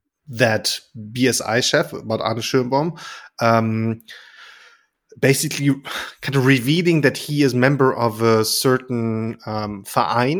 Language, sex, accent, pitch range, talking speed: English, male, German, 105-135 Hz, 115 wpm